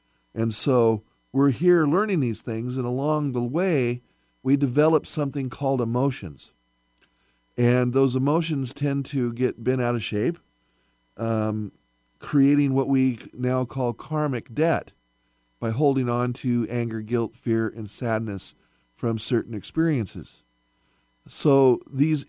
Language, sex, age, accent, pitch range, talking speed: English, male, 50-69, American, 105-135 Hz, 130 wpm